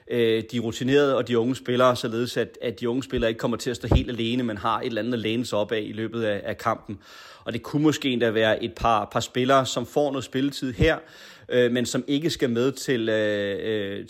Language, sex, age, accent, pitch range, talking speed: Danish, male, 30-49, native, 115-130 Hz, 245 wpm